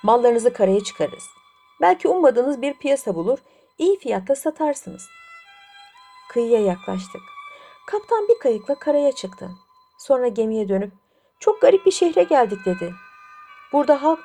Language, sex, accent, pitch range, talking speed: Turkish, female, native, 220-335 Hz, 120 wpm